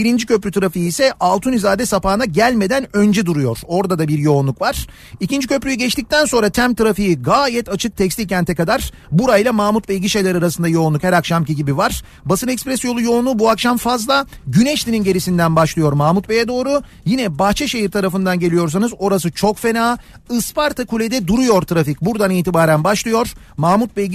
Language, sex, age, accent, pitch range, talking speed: Turkish, male, 40-59, native, 175-230 Hz, 160 wpm